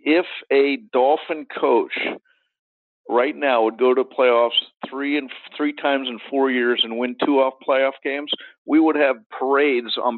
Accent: American